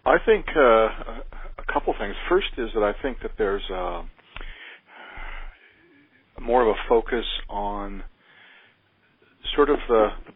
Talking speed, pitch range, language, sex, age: 125 wpm, 95-125 Hz, English, male, 50-69